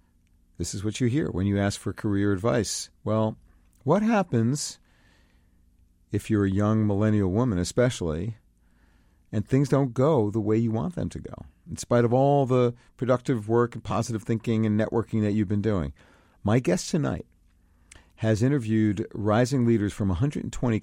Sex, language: male, English